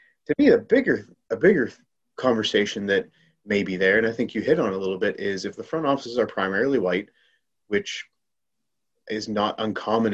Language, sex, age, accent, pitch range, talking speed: English, male, 30-49, American, 95-115 Hz, 190 wpm